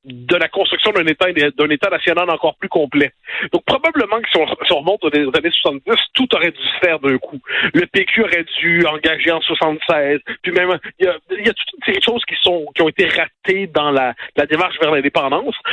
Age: 50-69